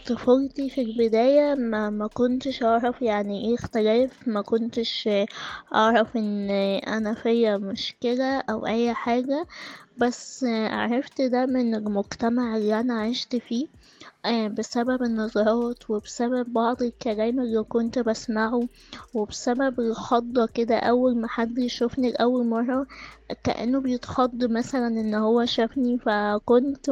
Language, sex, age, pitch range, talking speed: Arabic, female, 20-39, 225-255 Hz, 120 wpm